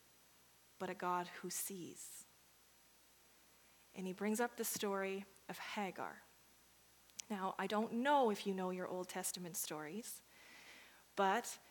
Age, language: 30-49, English